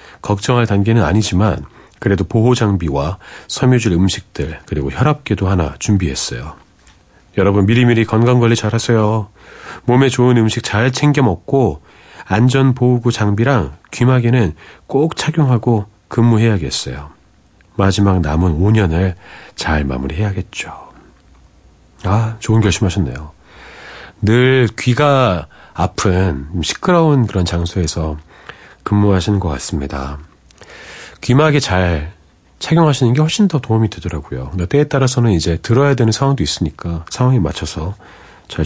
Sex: male